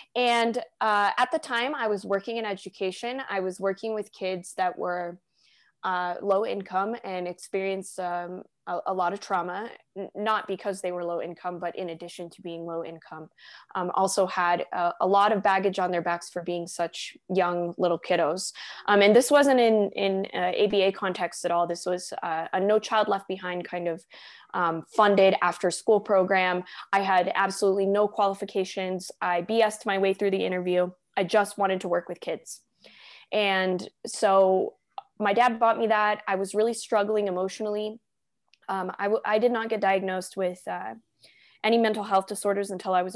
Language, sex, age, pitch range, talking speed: English, female, 20-39, 180-210 Hz, 185 wpm